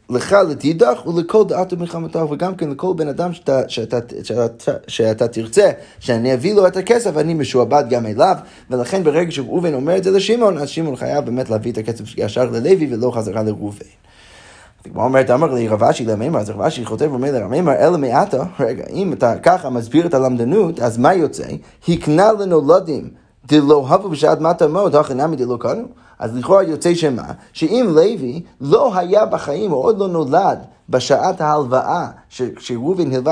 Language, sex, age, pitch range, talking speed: Hebrew, male, 20-39, 125-185 Hz, 170 wpm